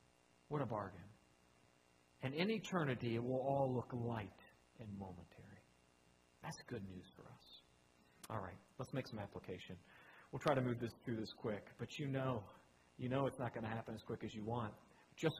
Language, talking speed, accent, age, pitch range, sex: English, 185 wpm, American, 40-59, 100-150 Hz, male